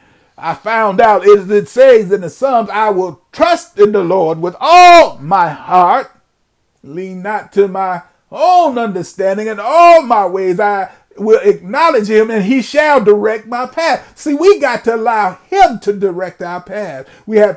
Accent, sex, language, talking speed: American, male, English, 175 wpm